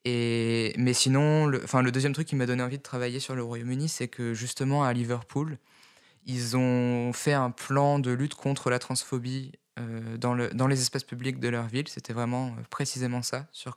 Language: French